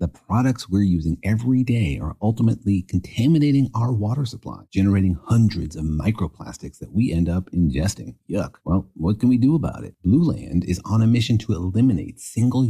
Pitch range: 90-120 Hz